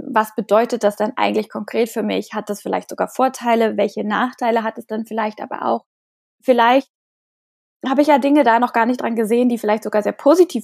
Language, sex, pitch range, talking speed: German, female, 220-255 Hz, 210 wpm